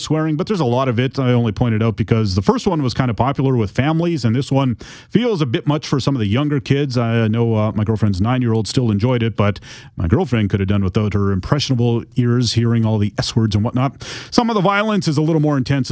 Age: 30-49